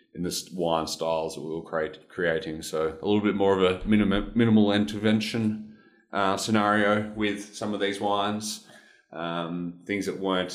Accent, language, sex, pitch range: Australian, English, male, 80-100 Hz